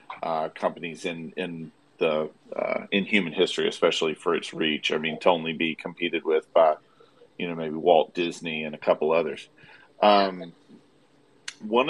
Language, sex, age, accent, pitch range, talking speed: English, male, 40-59, American, 85-105 Hz, 160 wpm